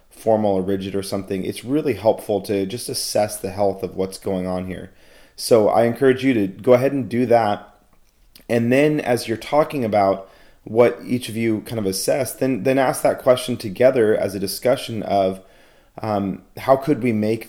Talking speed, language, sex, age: 190 wpm, English, male, 30-49